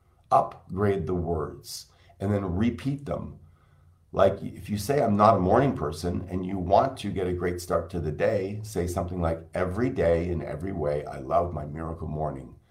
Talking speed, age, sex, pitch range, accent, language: 190 wpm, 50-69, male, 85-100 Hz, American, English